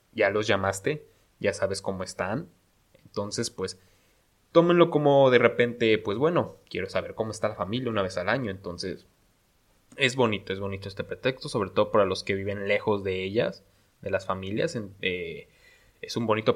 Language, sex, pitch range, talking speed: Spanish, male, 95-115 Hz, 175 wpm